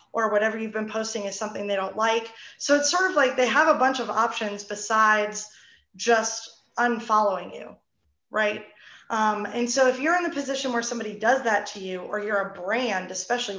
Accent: American